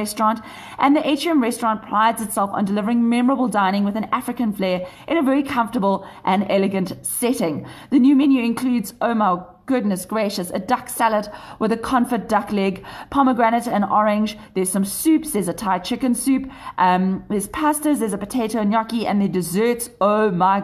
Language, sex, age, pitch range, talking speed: English, female, 30-49, 180-240 Hz, 180 wpm